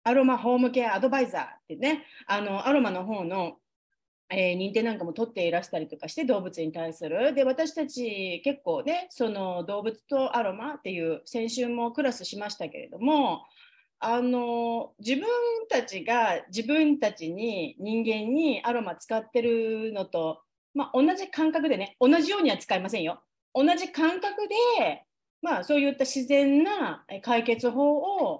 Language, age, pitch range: Japanese, 40-59, 195-300 Hz